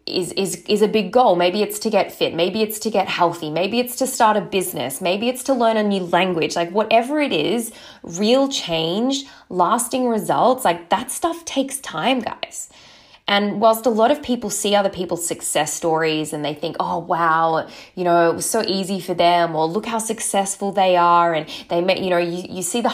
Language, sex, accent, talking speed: English, female, Australian, 215 wpm